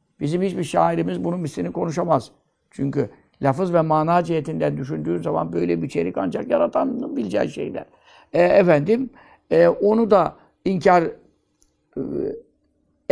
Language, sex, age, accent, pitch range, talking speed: Turkish, male, 60-79, native, 150-235 Hz, 120 wpm